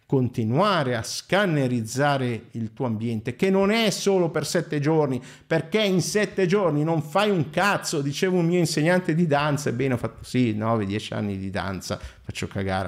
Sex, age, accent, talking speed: male, 50-69, native, 175 wpm